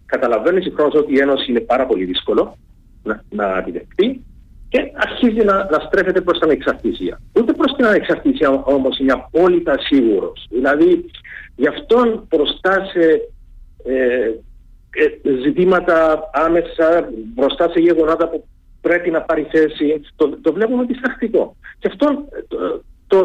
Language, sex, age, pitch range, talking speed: Greek, male, 50-69, 165-245 Hz, 130 wpm